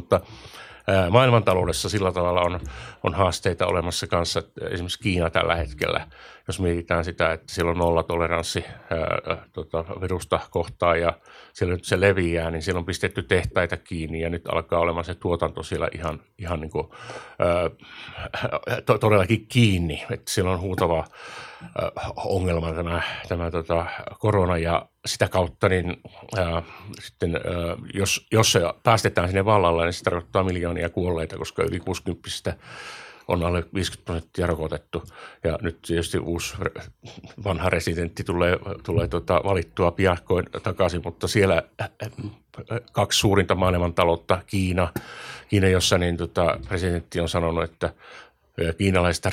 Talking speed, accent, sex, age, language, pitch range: 130 wpm, native, male, 50-69, Finnish, 85-95 Hz